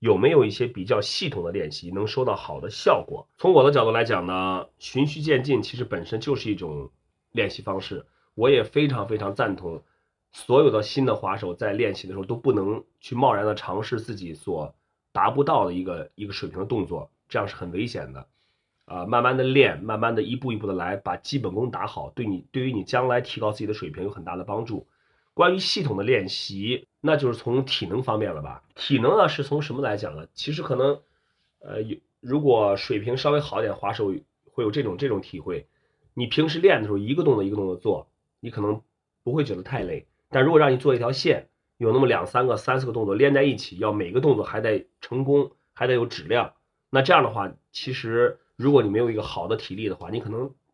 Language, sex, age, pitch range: Chinese, male, 30-49, 105-135 Hz